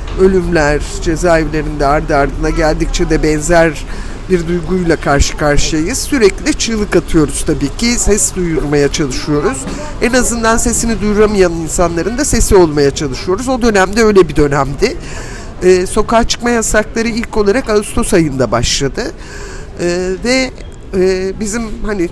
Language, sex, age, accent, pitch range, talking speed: Turkish, male, 50-69, native, 160-220 Hz, 135 wpm